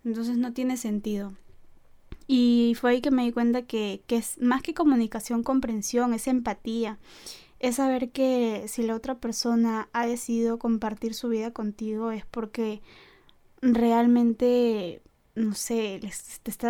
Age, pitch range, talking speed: 10-29, 220-240 Hz, 145 wpm